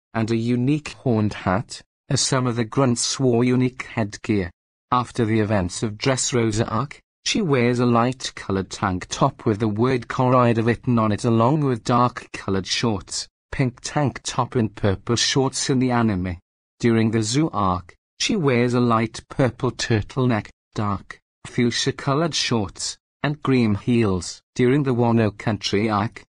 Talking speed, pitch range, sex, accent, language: 150 wpm, 110-130 Hz, male, British, English